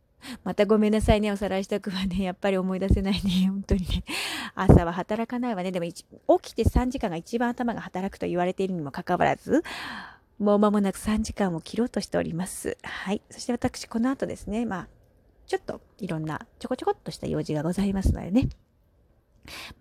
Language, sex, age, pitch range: Japanese, female, 30-49, 180-240 Hz